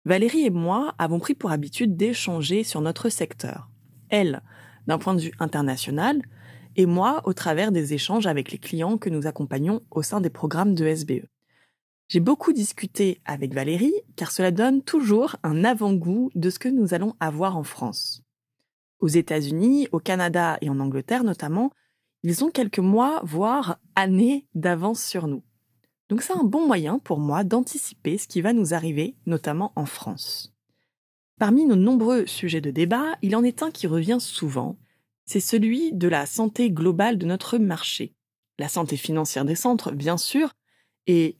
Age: 20-39